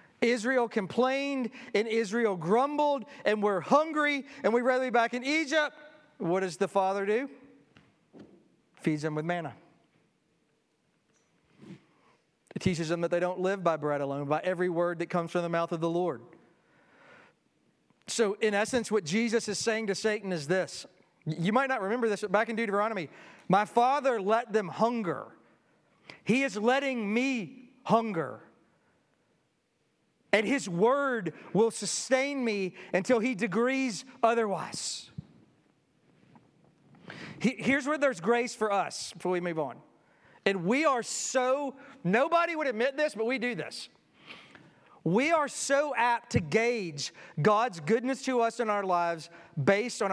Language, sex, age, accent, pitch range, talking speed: English, male, 40-59, American, 185-260 Hz, 145 wpm